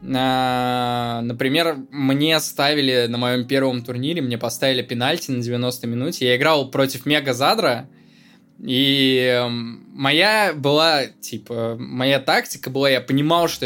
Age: 20-39